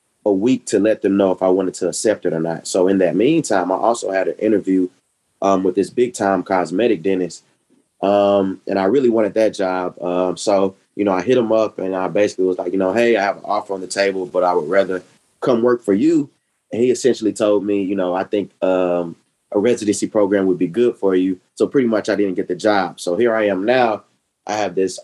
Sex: male